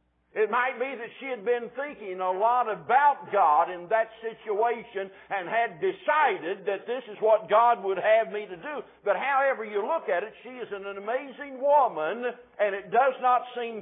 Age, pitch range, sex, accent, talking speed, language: 60-79, 145-230 Hz, male, American, 190 wpm, English